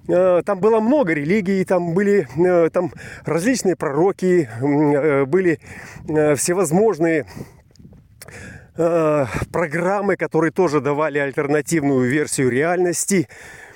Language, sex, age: Russian, male, 30-49